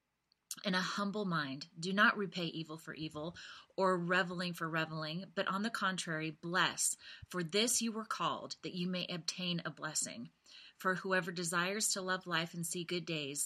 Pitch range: 165-190 Hz